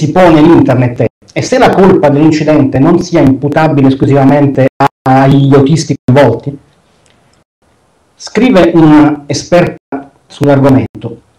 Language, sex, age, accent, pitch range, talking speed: Italian, male, 50-69, native, 130-170 Hz, 95 wpm